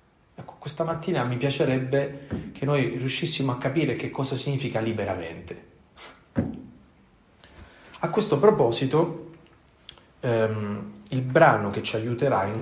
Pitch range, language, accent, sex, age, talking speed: 105-140 Hz, Italian, native, male, 40-59, 115 wpm